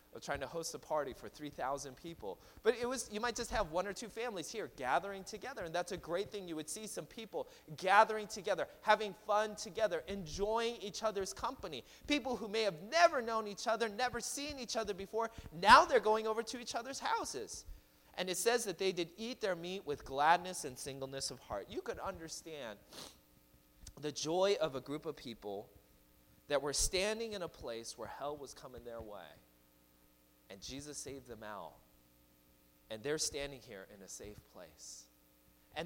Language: English